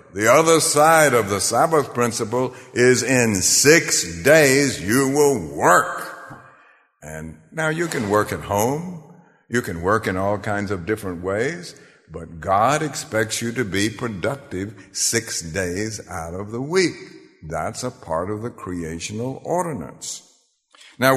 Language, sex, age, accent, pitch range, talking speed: English, male, 60-79, American, 100-145 Hz, 145 wpm